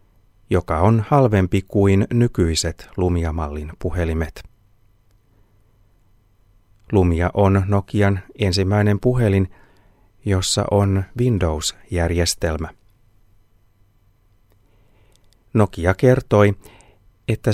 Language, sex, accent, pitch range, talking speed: Finnish, male, native, 95-105 Hz, 60 wpm